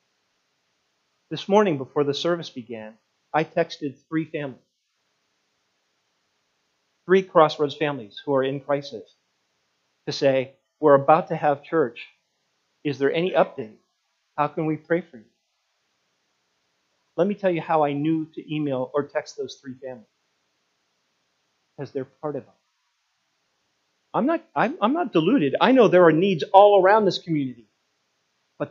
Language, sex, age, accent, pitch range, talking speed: English, male, 40-59, American, 125-170 Hz, 140 wpm